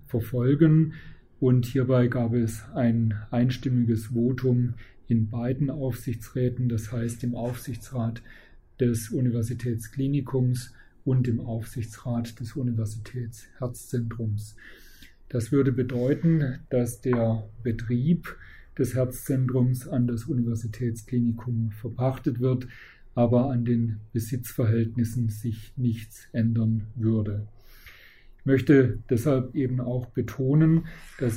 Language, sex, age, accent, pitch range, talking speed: German, male, 40-59, German, 115-130 Hz, 95 wpm